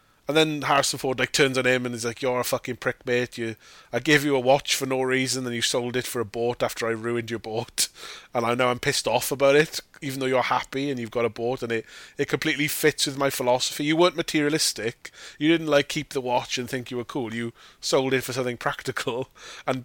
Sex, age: male, 20-39